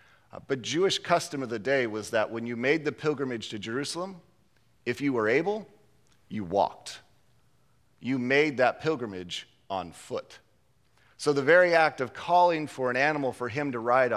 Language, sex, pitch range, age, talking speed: English, male, 125-160 Hz, 40-59, 170 wpm